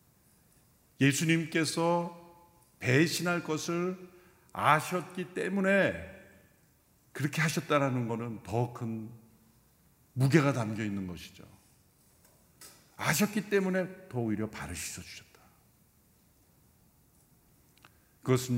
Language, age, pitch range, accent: Korean, 50-69, 110-155 Hz, native